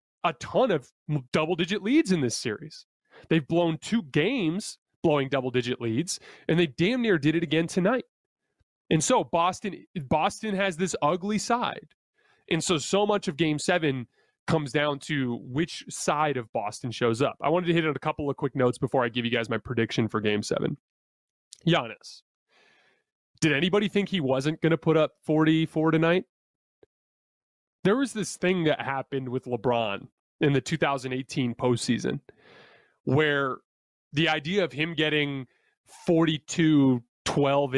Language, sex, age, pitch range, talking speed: English, male, 30-49, 130-165 Hz, 155 wpm